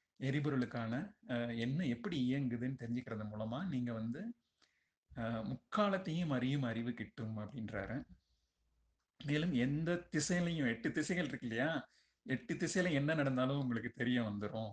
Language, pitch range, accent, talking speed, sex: Tamil, 115-150 Hz, native, 105 wpm, male